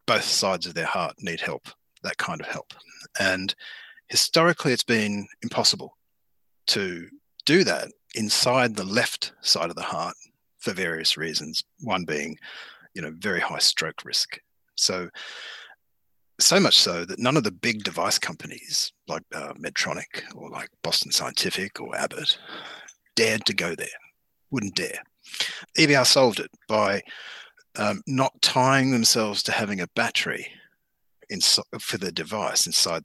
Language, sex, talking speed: English, male, 145 wpm